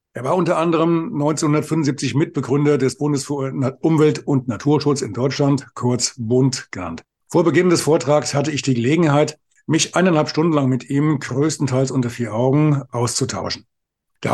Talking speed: 155 wpm